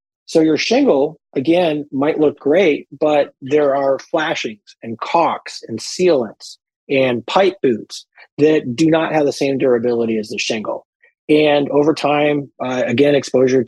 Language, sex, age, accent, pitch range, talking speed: English, male, 40-59, American, 125-150 Hz, 150 wpm